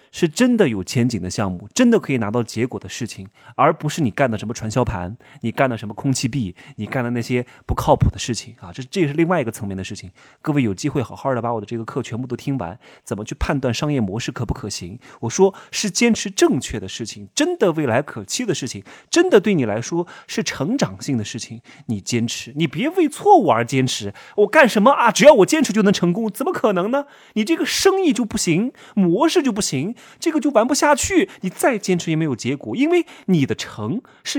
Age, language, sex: 30-49, Chinese, male